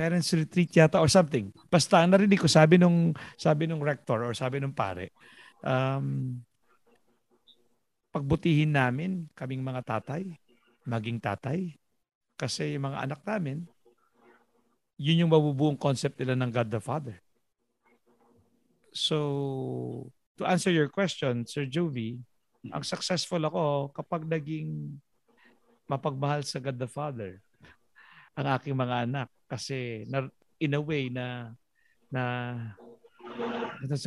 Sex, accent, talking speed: male, native, 120 wpm